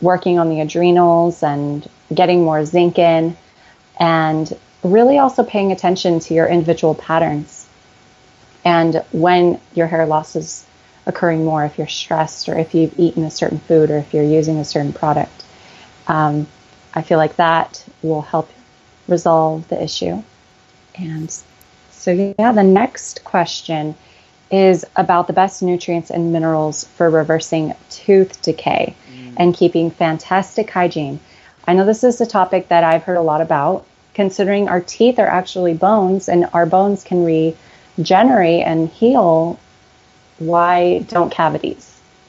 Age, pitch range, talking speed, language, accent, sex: 30-49, 155-180 Hz, 145 wpm, English, American, female